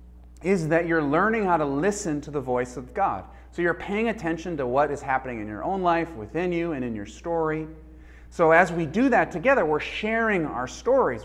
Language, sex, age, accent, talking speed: English, male, 40-59, American, 215 wpm